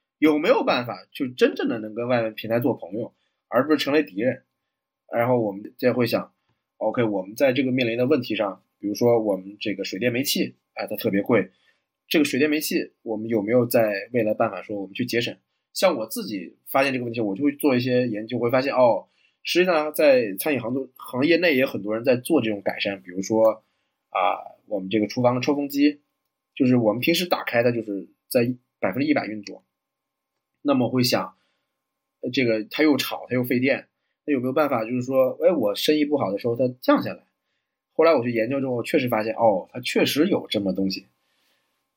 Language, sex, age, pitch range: Chinese, male, 20-39, 110-145 Hz